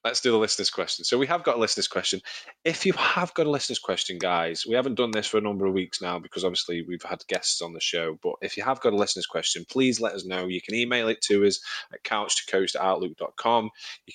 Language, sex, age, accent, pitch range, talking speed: English, male, 20-39, British, 95-110 Hz, 255 wpm